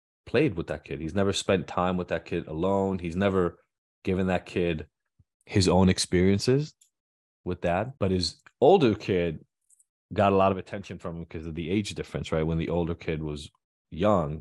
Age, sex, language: 30-49, male, English